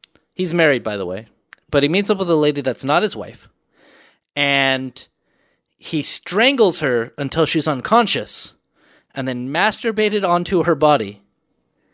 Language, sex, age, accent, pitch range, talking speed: English, male, 30-49, American, 140-185 Hz, 145 wpm